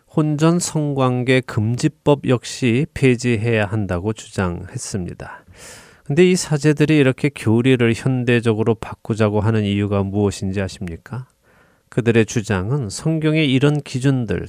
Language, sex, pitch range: Korean, male, 110-140 Hz